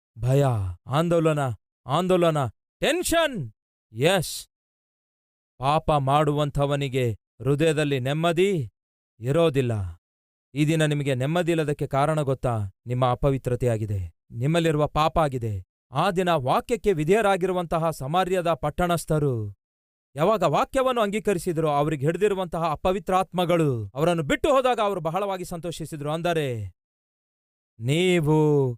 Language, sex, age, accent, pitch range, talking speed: Kannada, male, 40-59, native, 125-170 Hz, 85 wpm